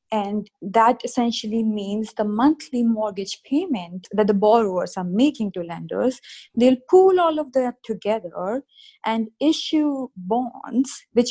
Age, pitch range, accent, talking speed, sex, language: 20-39, 200-270 Hz, Indian, 135 wpm, female, English